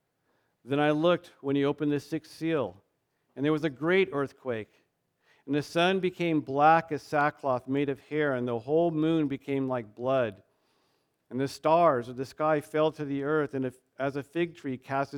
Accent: American